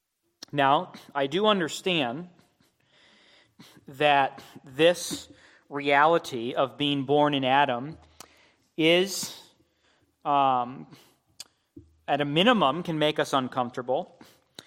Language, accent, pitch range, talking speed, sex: English, American, 140-170 Hz, 85 wpm, male